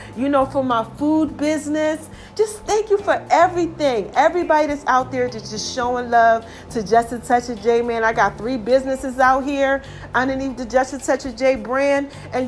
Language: English